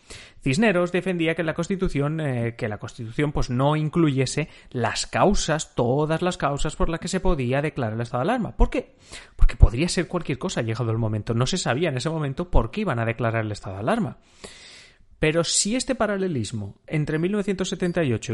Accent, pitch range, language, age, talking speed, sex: Spanish, 125-185 Hz, Spanish, 30-49, 195 wpm, male